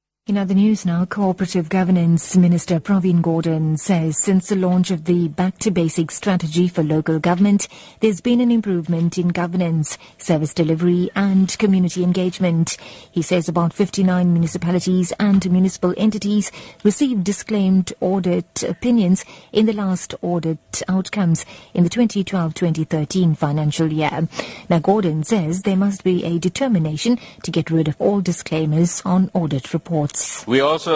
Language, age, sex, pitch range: English, 30-49, female, 150-185 Hz